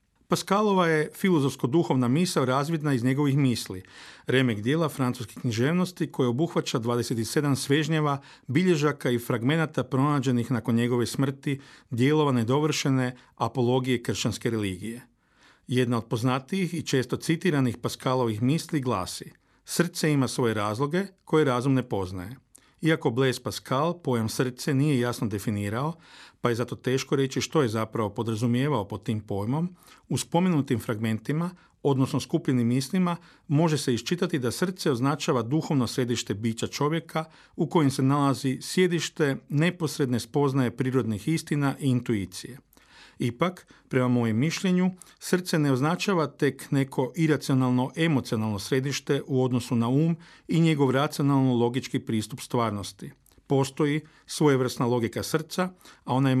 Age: 50-69